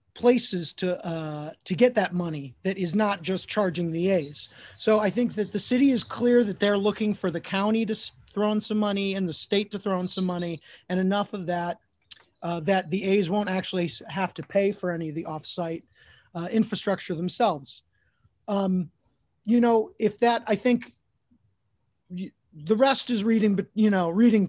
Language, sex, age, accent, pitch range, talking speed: English, male, 30-49, American, 175-220 Hz, 190 wpm